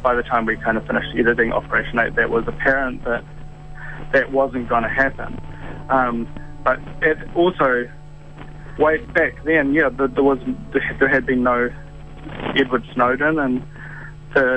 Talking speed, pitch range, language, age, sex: 150 wpm, 120-145 Hz, English, 30-49, male